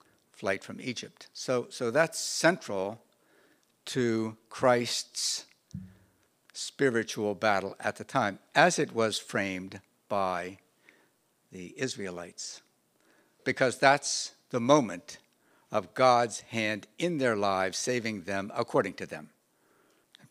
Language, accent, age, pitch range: English, American, 60-79, 105-160 Hz